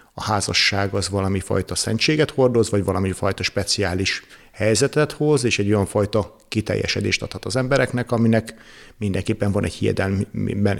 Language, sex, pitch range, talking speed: Hungarian, male, 100-115 Hz, 150 wpm